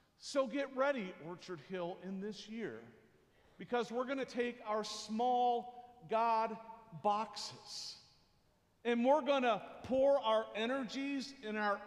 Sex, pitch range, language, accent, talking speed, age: male, 210-260 Hz, English, American, 130 wpm, 50-69